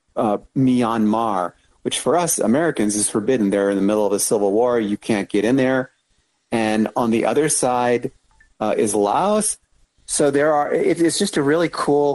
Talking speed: 185 wpm